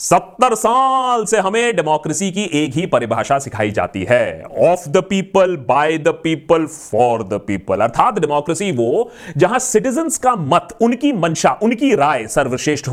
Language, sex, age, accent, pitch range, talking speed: Hindi, male, 30-49, native, 150-245 Hz, 155 wpm